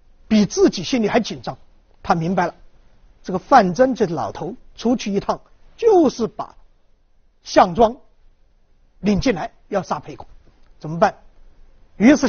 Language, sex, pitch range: Chinese, male, 215-325 Hz